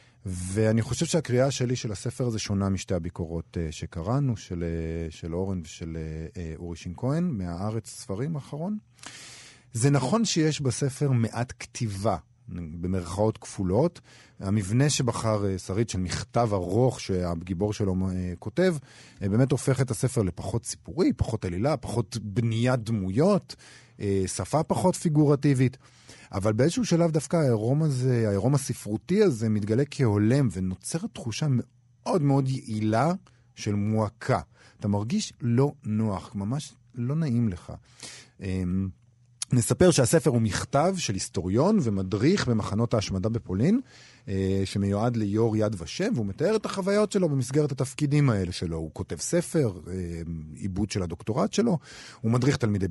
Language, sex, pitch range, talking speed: Hebrew, male, 100-135 Hz, 125 wpm